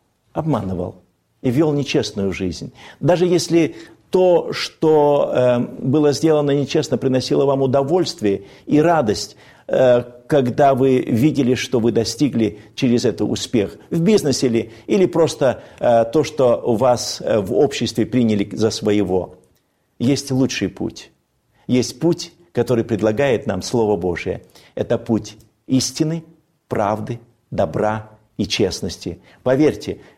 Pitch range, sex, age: 105-140 Hz, male, 50-69